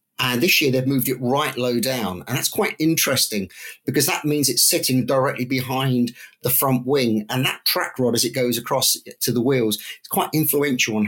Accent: British